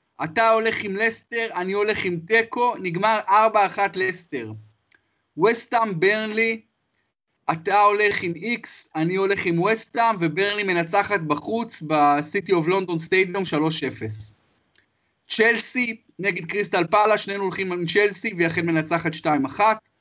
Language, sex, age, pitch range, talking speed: Hebrew, male, 30-49, 165-215 Hz, 115 wpm